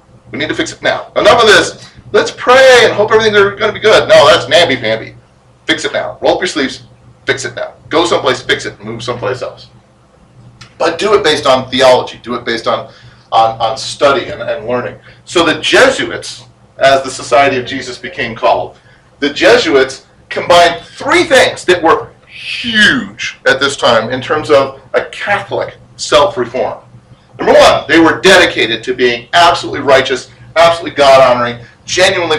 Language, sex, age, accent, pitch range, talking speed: English, male, 40-59, American, 120-175 Hz, 170 wpm